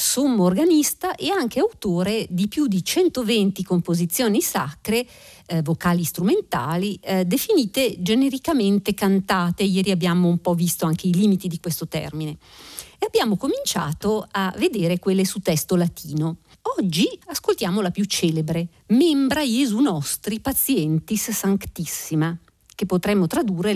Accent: native